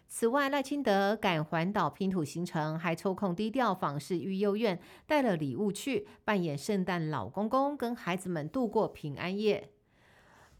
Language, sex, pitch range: Chinese, female, 170-220 Hz